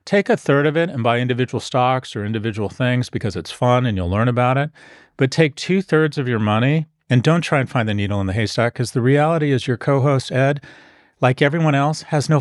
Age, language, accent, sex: 40-59, English, American, male